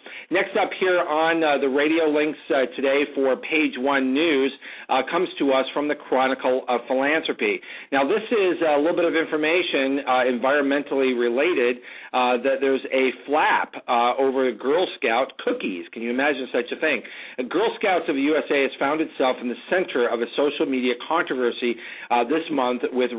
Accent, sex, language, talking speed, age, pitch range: American, male, English, 185 wpm, 50-69, 125-150 Hz